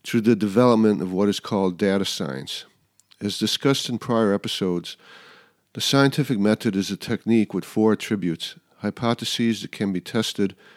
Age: 50-69